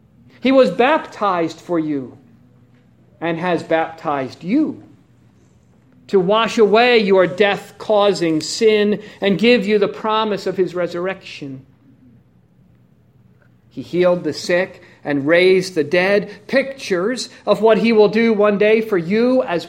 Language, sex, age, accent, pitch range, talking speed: English, male, 50-69, American, 170-235 Hz, 130 wpm